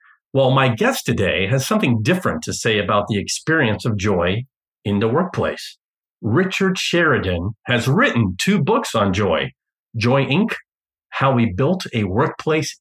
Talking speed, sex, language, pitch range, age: 150 wpm, male, English, 105-145 Hz, 50-69